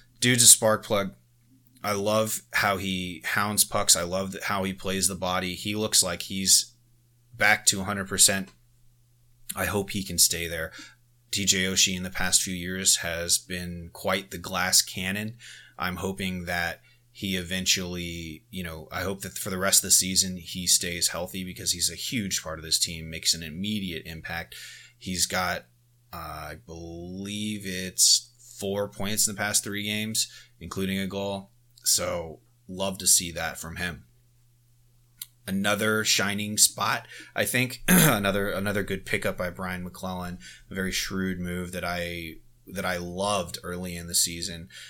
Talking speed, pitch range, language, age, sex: 160 wpm, 90-110 Hz, English, 30-49, male